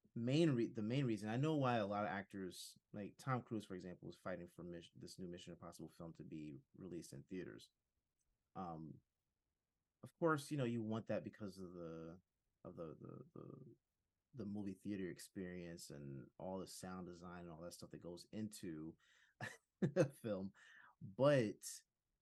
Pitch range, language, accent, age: 90-120 Hz, English, American, 30-49